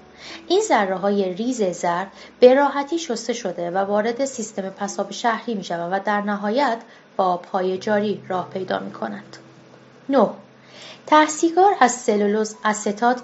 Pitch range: 190-250 Hz